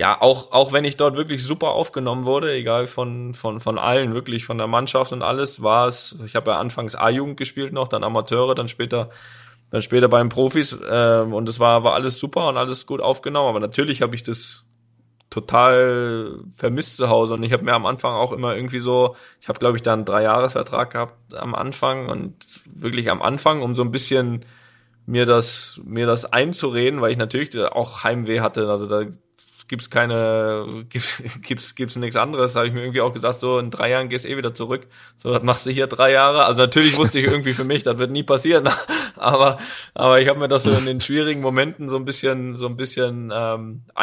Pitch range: 115-130 Hz